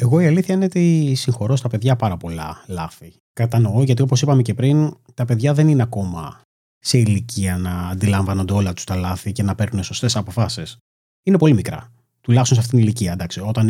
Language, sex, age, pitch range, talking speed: Greek, male, 30-49, 100-155 Hz, 195 wpm